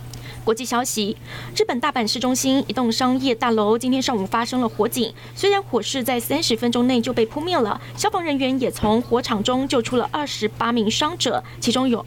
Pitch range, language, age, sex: 225-270 Hz, Chinese, 20-39, female